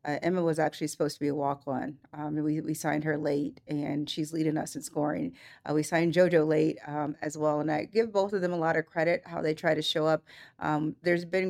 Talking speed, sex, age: 260 wpm, female, 40-59